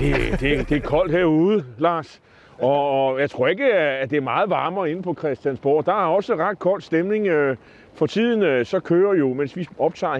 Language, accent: Danish, native